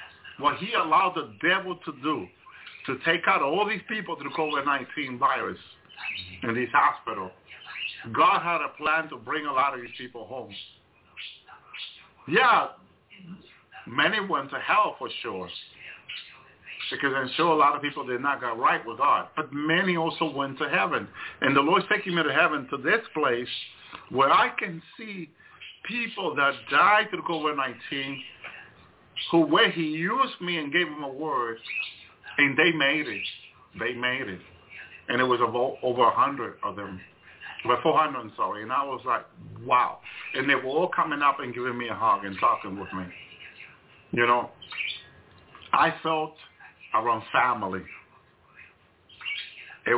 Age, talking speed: 50-69, 165 wpm